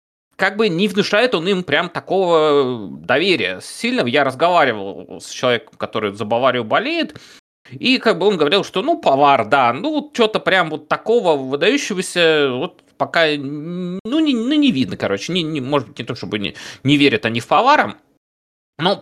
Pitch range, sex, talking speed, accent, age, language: 120-185 Hz, male, 175 wpm, native, 30-49, Russian